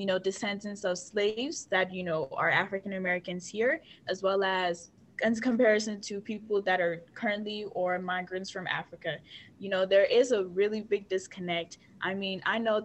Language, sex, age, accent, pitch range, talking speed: English, female, 10-29, American, 170-200 Hz, 180 wpm